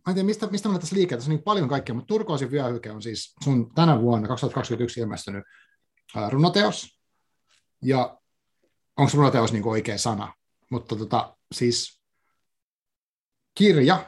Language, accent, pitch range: Finnish, native, 115-145 Hz